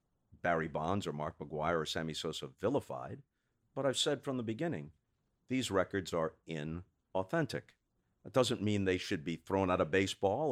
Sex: male